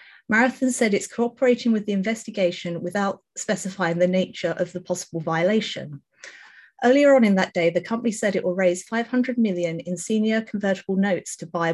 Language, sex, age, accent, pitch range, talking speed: English, female, 30-49, British, 180-225 Hz, 175 wpm